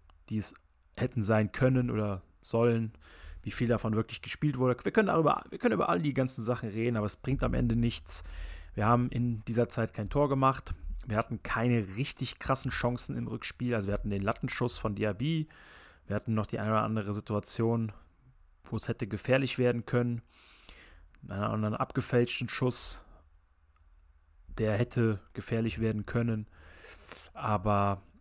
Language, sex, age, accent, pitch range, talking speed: German, male, 30-49, German, 100-120 Hz, 165 wpm